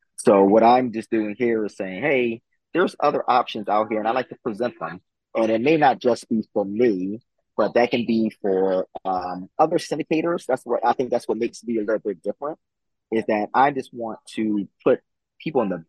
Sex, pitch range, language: male, 95-120 Hz, English